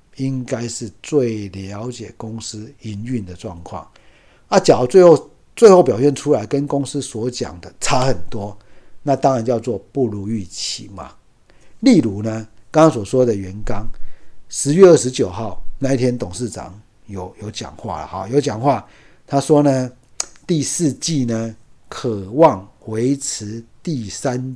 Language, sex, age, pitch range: Chinese, male, 50-69, 105-145 Hz